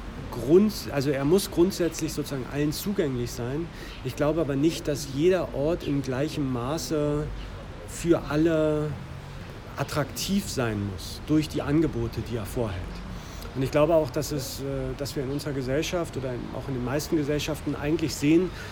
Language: German